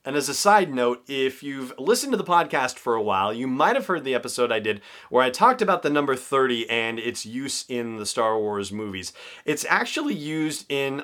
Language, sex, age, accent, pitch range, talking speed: English, male, 30-49, American, 105-130 Hz, 225 wpm